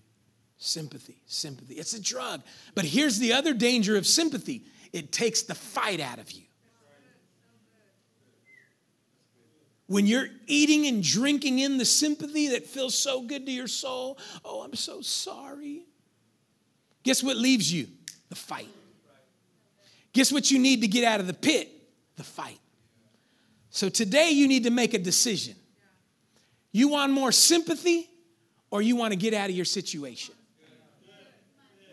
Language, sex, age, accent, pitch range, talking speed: English, male, 40-59, American, 170-265 Hz, 145 wpm